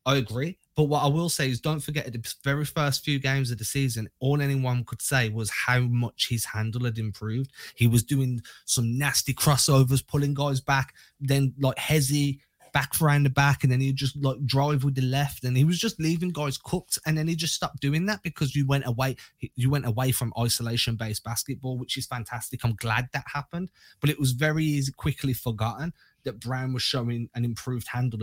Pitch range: 120-140 Hz